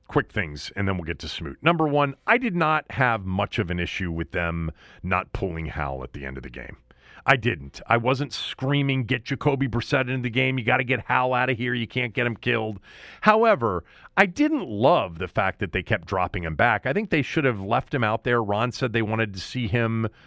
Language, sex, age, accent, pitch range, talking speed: English, male, 40-59, American, 95-145 Hz, 240 wpm